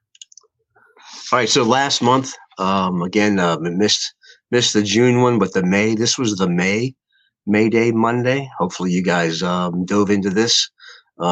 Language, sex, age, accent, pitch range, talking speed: English, male, 40-59, American, 90-110 Hz, 165 wpm